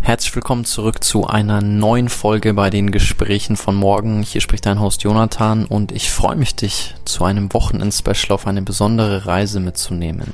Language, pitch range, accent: German, 95-110 Hz, German